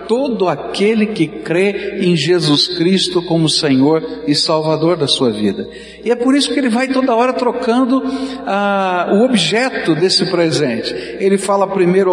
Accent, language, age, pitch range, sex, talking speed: Brazilian, Portuguese, 60-79, 185-245 Hz, male, 155 wpm